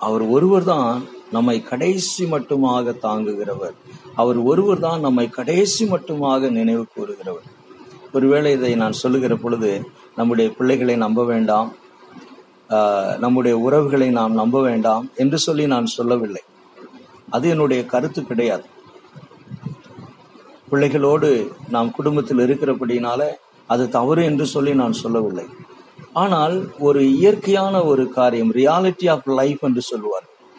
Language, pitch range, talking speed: Tamil, 120-150 Hz, 110 wpm